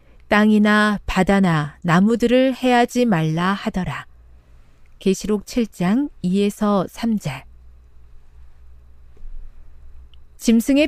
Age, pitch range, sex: 40-59, 150-245 Hz, female